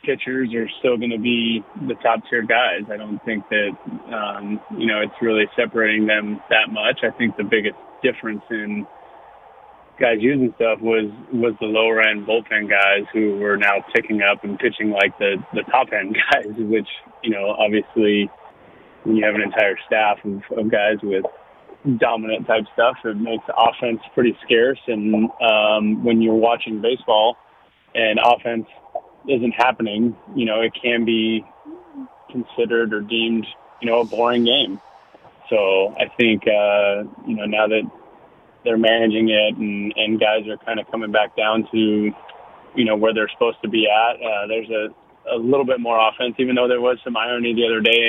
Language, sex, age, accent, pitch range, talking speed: English, male, 20-39, American, 105-115 Hz, 180 wpm